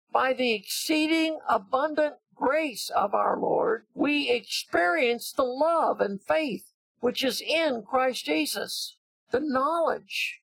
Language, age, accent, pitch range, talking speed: English, 60-79, American, 225-315 Hz, 120 wpm